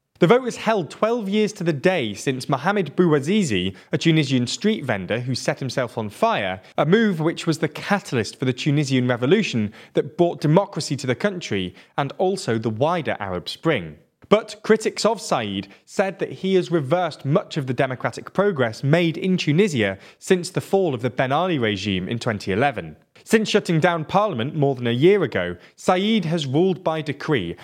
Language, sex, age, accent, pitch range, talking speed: English, male, 20-39, British, 120-185 Hz, 180 wpm